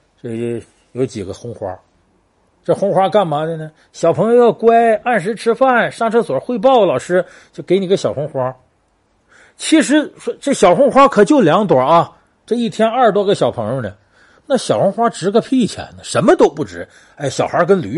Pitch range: 140-230 Hz